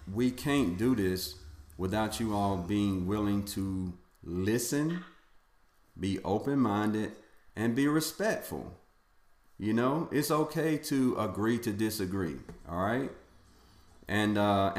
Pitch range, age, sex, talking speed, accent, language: 85-105 Hz, 40-59, male, 115 wpm, American, English